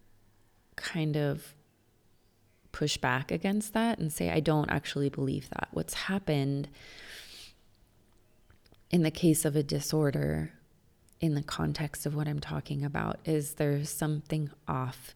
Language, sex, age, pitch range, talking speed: English, female, 20-39, 130-160 Hz, 130 wpm